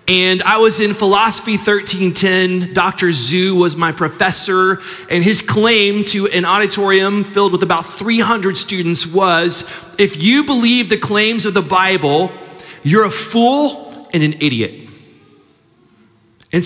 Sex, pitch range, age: male, 150-195 Hz, 30-49